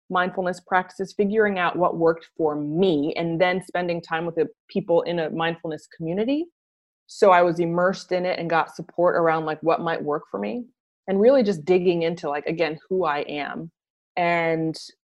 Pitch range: 165-205 Hz